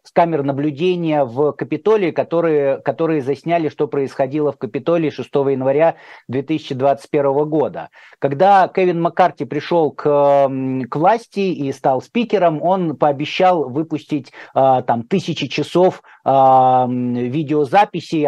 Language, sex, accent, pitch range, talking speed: Russian, male, native, 145-180 Hz, 110 wpm